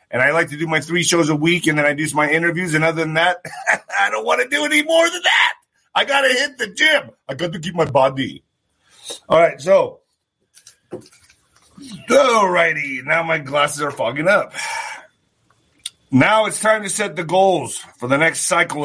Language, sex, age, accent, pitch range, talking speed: English, male, 40-59, American, 155-185 Hz, 200 wpm